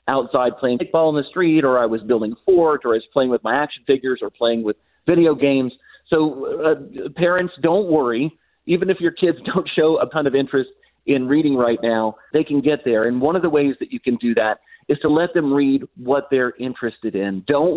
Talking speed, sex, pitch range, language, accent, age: 225 wpm, male, 125-165 Hz, English, American, 40-59